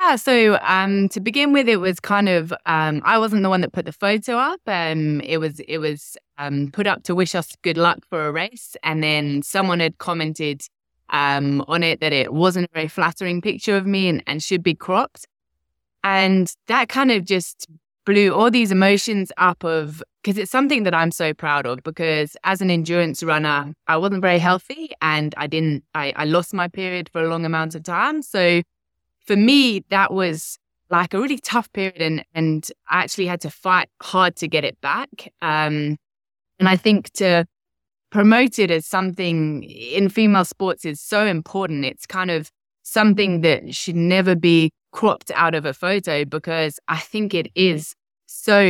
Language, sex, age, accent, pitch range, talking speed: English, female, 20-39, British, 160-195 Hz, 190 wpm